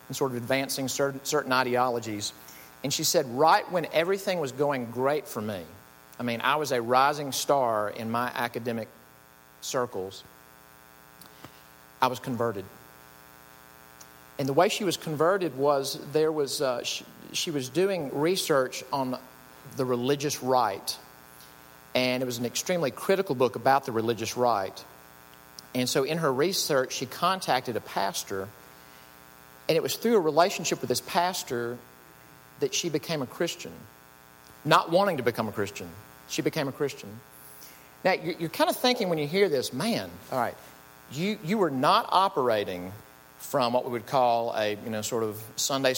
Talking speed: 160 wpm